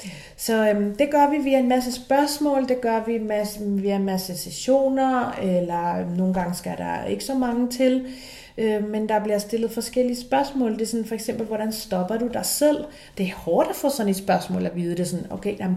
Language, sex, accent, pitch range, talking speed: Danish, female, native, 190-245 Hz, 220 wpm